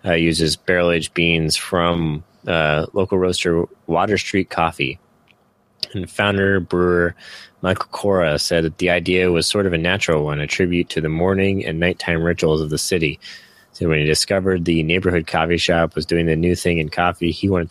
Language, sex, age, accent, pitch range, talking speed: English, male, 20-39, American, 80-90 Hz, 185 wpm